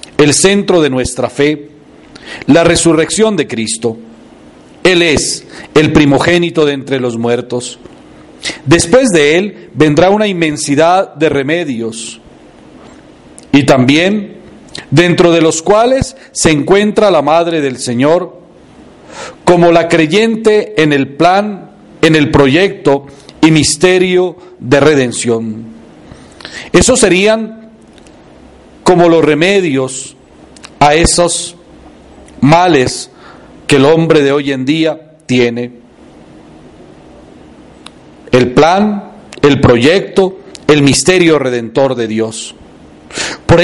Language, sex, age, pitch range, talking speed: Spanish, male, 40-59, 130-180 Hz, 105 wpm